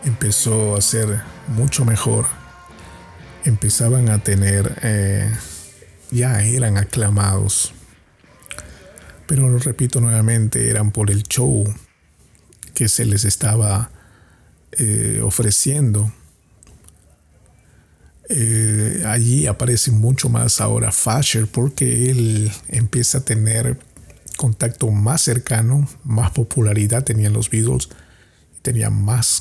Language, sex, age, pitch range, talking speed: Spanish, male, 50-69, 105-120 Hz, 100 wpm